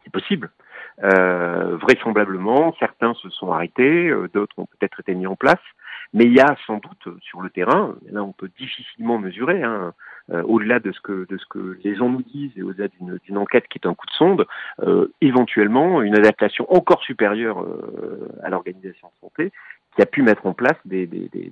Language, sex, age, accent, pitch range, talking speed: French, male, 40-59, French, 100-140 Hz, 205 wpm